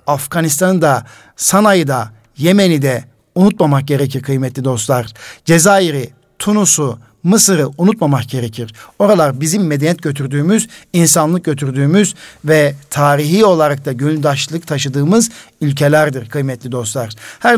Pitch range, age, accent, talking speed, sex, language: 145-185 Hz, 60-79, native, 105 wpm, male, Turkish